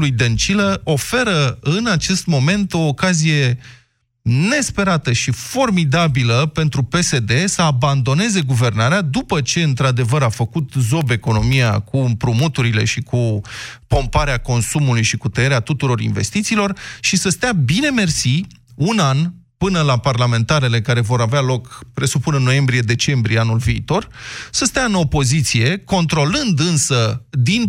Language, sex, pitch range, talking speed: Romanian, male, 125-175 Hz, 130 wpm